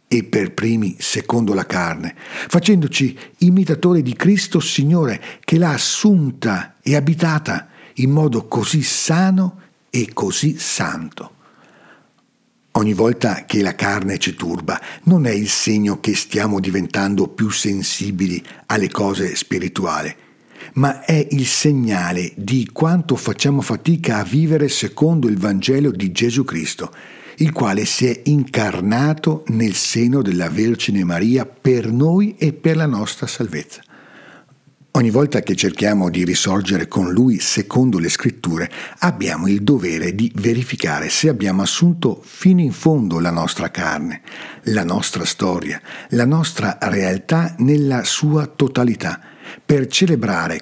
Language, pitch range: Italian, 105-155 Hz